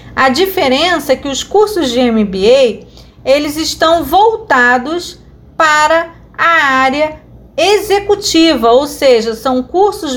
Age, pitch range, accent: 40-59, 255-345 Hz, Brazilian